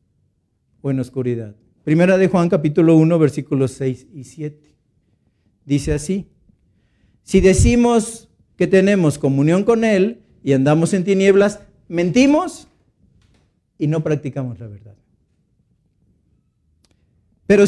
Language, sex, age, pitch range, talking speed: Spanish, male, 50-69, 135-195 Hz, 110 wpm